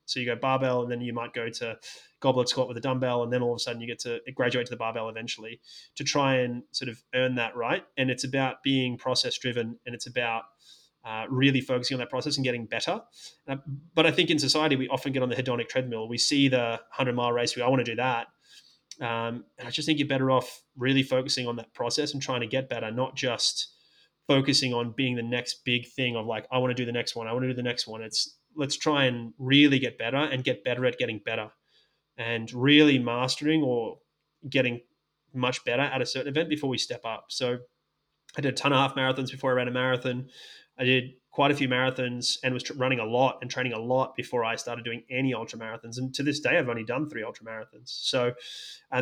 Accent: Australian